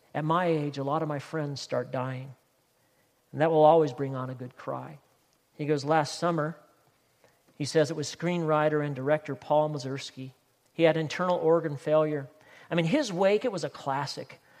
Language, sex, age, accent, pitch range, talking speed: English, male, 50-69, American, 130-165 Hz, 185 wpm